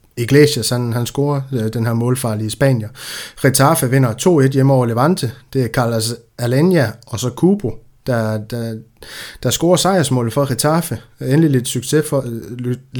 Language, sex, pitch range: Danish, male, 115-140 Hz